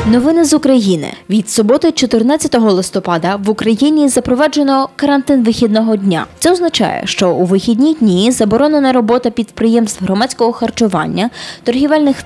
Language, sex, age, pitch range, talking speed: Polish, female, 20-39, 205-270 Hz, 120 wpm